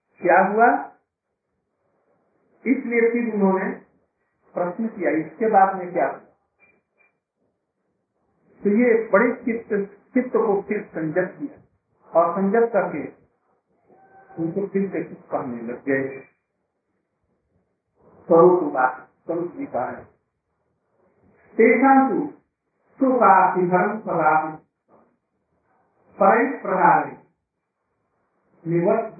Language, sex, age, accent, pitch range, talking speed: Hindi, male, 50-69, native, 170-230 Hz, 45 wpm